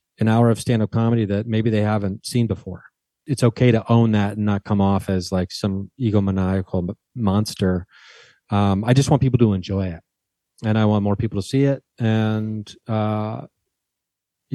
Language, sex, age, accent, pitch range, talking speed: English, male, 30-49, American, 100-125 Hz, 175 wpm